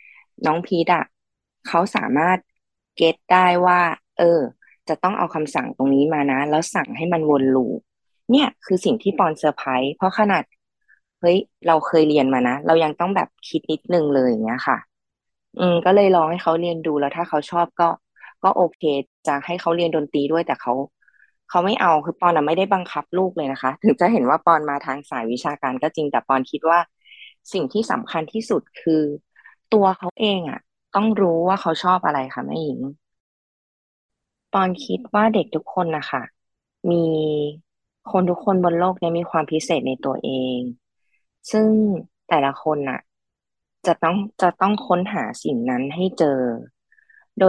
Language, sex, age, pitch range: Thai, female, 20-39, 150-185 Hz